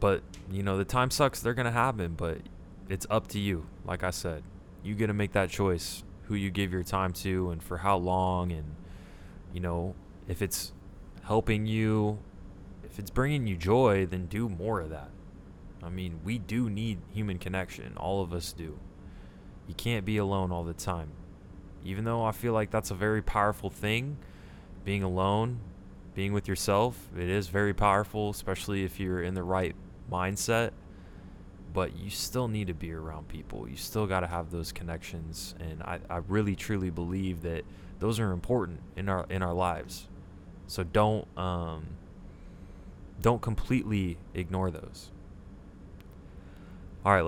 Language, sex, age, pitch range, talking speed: English, male, 20-39, 90-100 Hz, 170 wpm